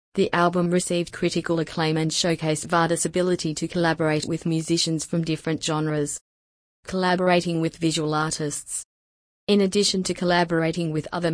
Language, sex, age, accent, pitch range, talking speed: English, female, 30-49, Australian, 155-175 Hz, 140 wpm